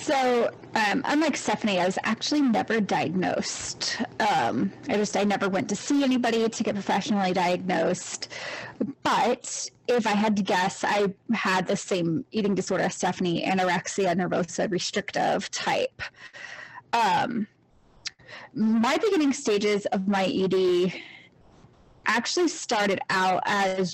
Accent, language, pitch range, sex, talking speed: American, English, 195-255 Hz, female, 130 wpm